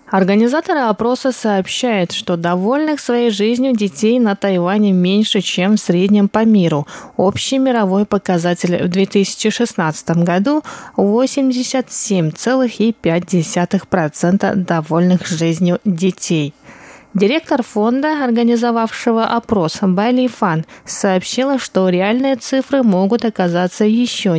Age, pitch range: 20-39, 185-240 Hz